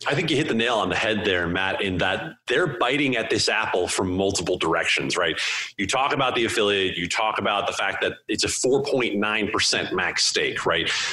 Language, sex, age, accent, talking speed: English, male, 30-49, American, 210 wpm